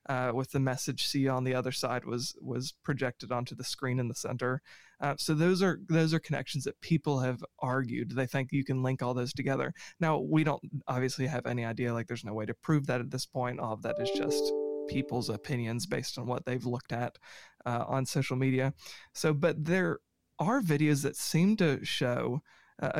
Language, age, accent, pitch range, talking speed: English, 30-49, American, 130-150 Hz, 210 wpm